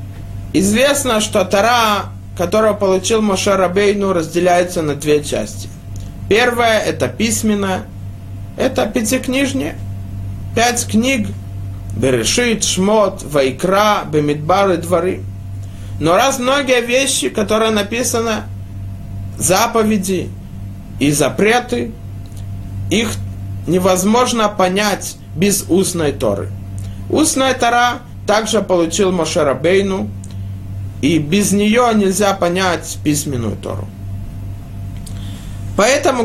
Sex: male